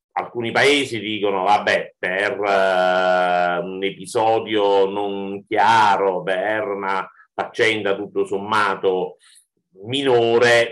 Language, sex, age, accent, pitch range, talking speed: Italian, male, 50-69, native, 95-140 Hz, 85 wpm